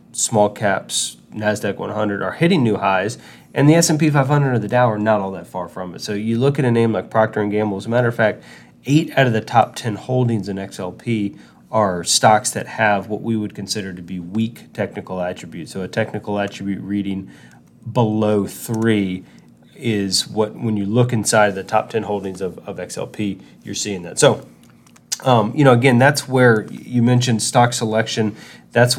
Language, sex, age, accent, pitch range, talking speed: English, male, 30-49, American, 100-120 Hz, 195 wpm